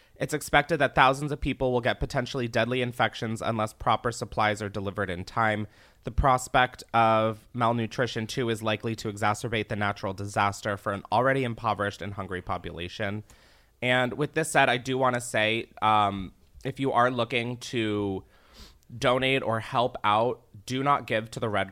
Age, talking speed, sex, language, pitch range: 20-39, 170 wpm, male, English, 105-125 Hz